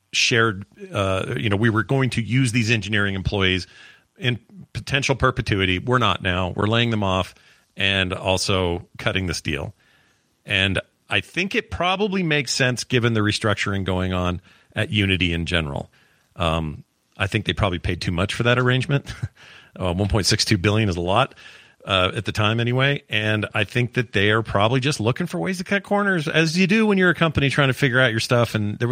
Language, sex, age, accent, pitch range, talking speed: English, male, 40-59, American, 95-125 Hz, 195 wpm